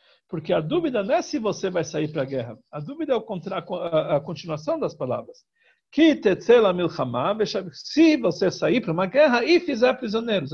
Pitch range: 160-245 Hz